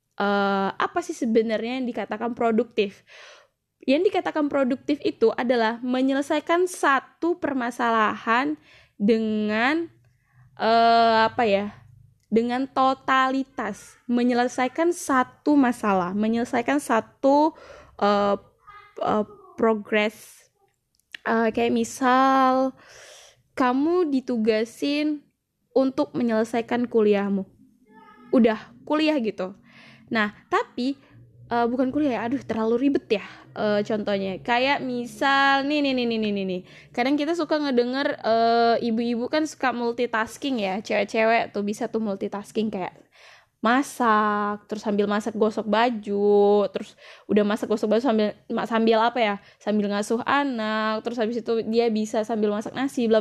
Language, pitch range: Indonesian, 215-270 Hz